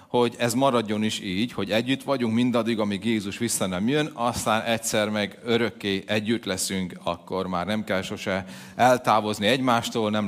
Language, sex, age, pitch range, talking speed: Hungarian, male, 40-59, 110-145 Hz, 165 wpm